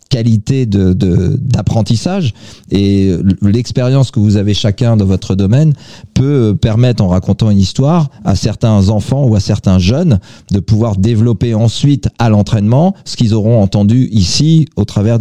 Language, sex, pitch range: French, male, 100-130 Hz